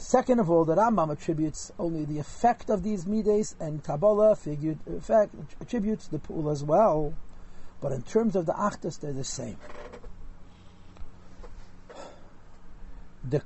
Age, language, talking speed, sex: 50-69, English, 140 wpm, male